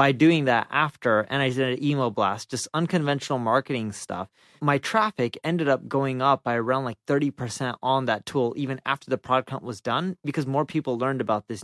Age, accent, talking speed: 20-39, American, 205 wpm